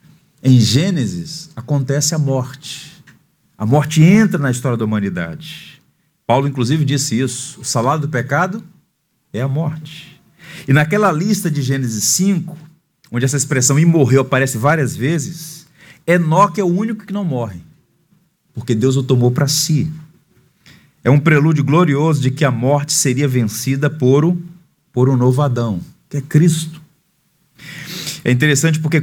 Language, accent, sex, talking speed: Portuguese, Brazilian, male, 150 wpm